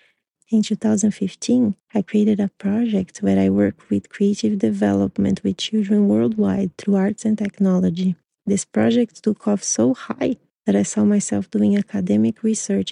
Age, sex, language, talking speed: 30-49, female, English, 150 wpm